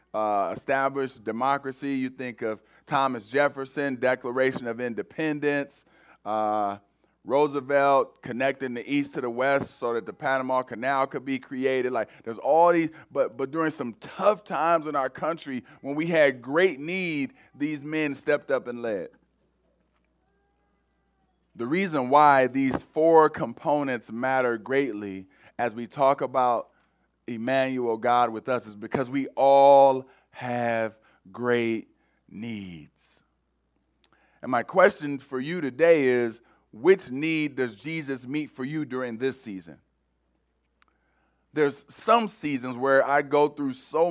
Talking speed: 135 wpm